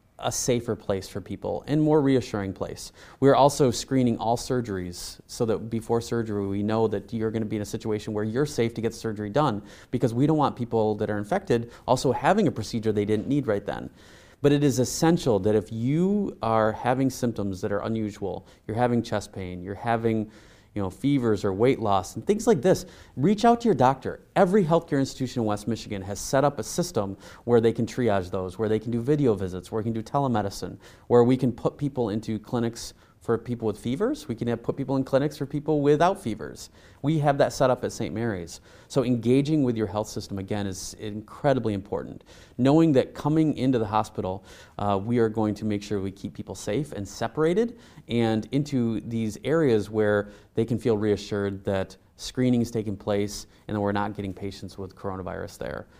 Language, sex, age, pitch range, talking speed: English, male, 30-49, 105-130 Hz, 210 wpm